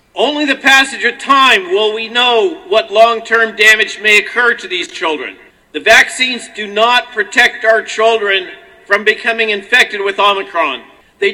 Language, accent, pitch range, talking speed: English, American, 220-280 Hz, 155 wpm